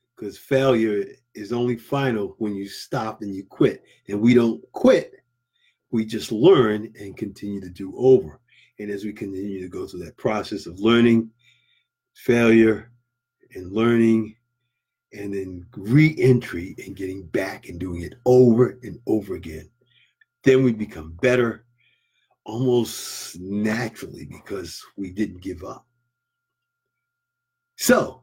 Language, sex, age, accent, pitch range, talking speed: English, male, 50-69, American, 110-130 Hz, 130 wpm